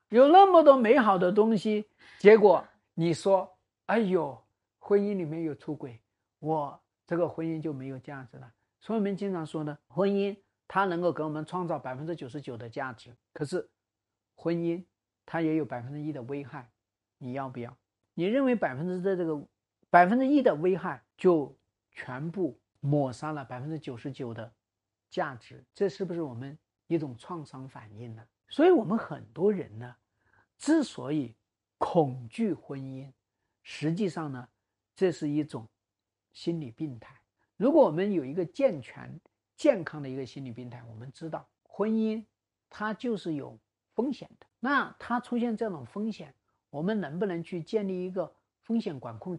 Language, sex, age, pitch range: Chinese, male, 50-69, 125-200 Hz